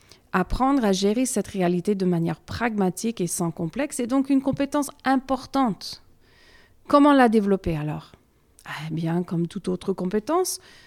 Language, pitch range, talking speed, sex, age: French, 180-255 Hz, 145 wpm, female, 40-59